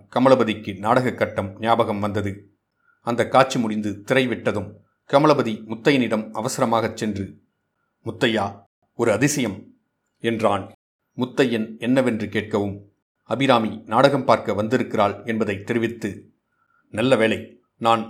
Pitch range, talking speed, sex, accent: 105-120 Hz, 95 wpm, male, native